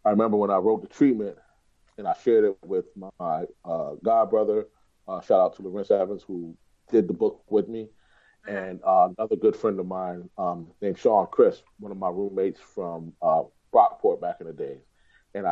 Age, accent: 30-49, American